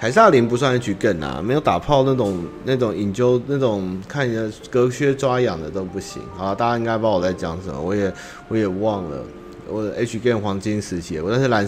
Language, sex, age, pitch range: Chinese, male, 30-49, 95-125 Hz